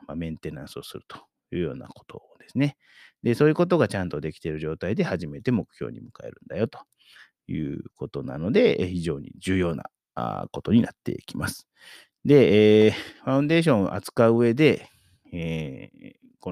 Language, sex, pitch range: Japanese, male, 85-120 Hz